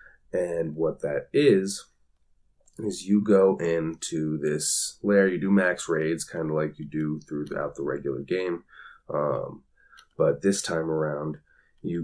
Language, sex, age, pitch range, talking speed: English, male, 30-49, 75-105 Hz, 145 wpm